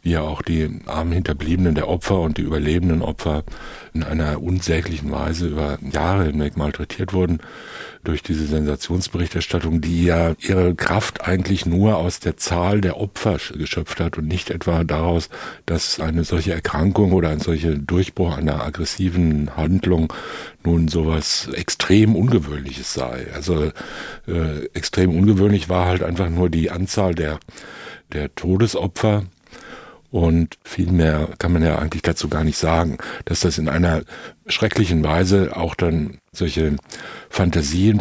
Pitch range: 80-90 Hz